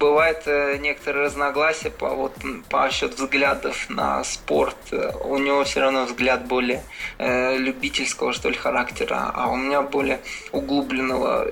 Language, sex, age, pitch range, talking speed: Russian, male, 20-39, 125-150 Hz, 140 wpm